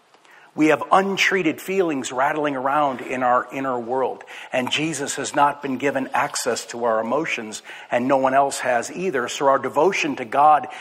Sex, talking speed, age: male, 170 wpm, 50-69